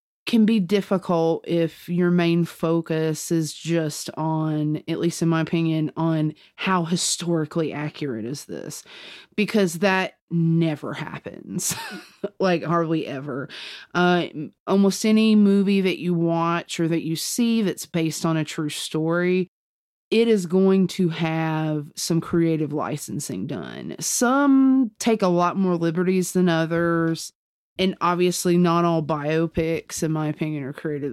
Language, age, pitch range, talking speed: English, 30-49, 160-190 Hz, 140 wpm